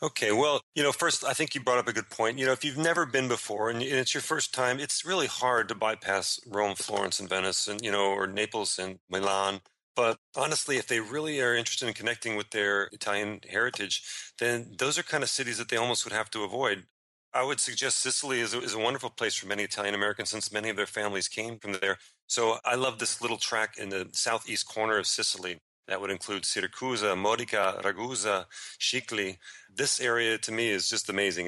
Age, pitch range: 40-59, 100-120 Hz